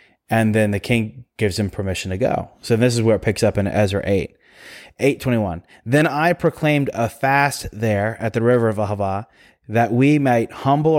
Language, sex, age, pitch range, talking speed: English, male, 30-49, 110-140 Hz, 190 wpm